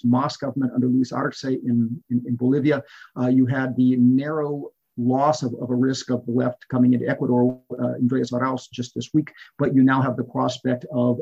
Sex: male